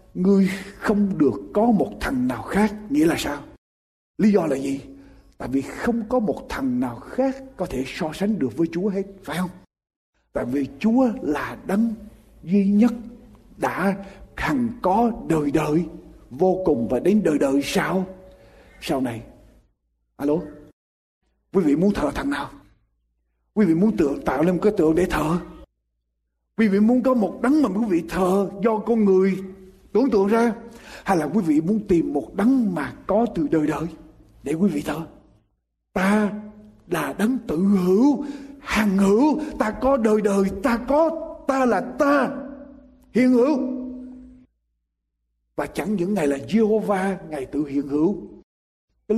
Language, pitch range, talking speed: Vietnamese, 150-230 Hz, 160 wpm